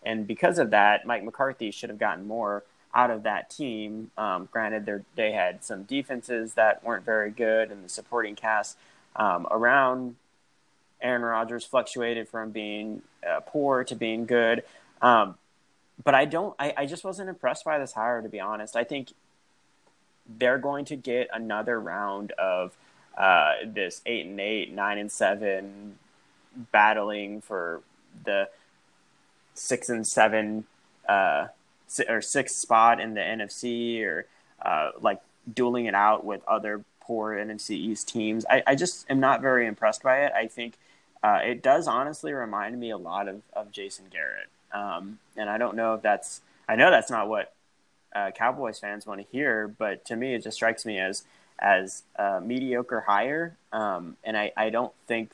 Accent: American